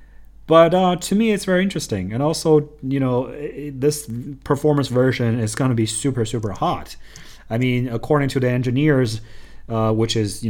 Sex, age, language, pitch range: male, 30-49, Chinese, 105-130 Hz